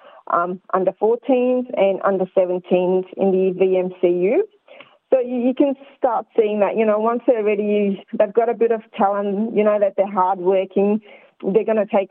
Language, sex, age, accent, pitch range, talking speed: Gujarati, female, 30-49, Australian, 185-235 Hz, 185 wpm